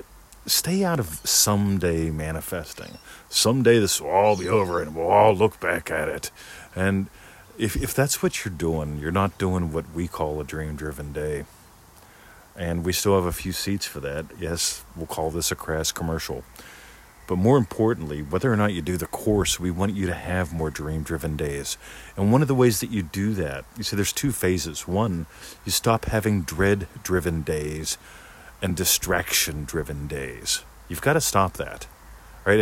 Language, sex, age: English, male, 50-69